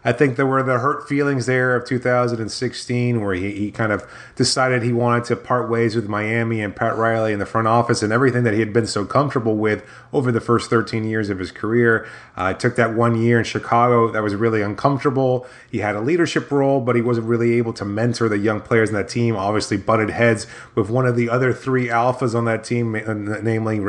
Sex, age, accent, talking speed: male, 30-49, American, 225 wpm